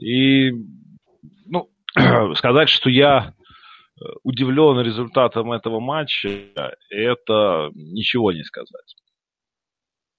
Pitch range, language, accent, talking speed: 95-125 Hz, Russian, native, 75 wpm